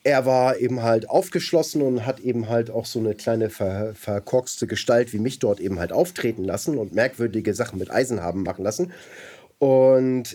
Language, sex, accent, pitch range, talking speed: German, male, German, 110-135 Hz, 180 wpm